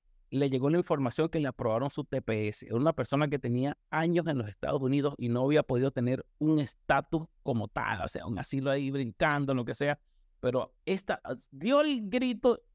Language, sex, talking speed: Spanish, male, 200 wpm